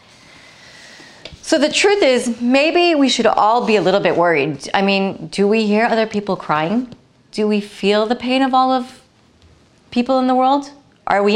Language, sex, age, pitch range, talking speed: English, female, 30-49, 185-240 Hz, 185 wpm